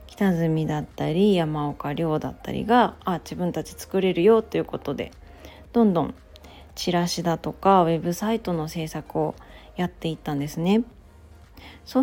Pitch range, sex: 155-205 Hz, female